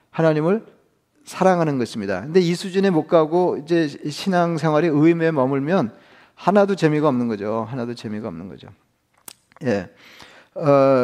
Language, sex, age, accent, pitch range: Korean, male, 40-59, native, 135-170 Hz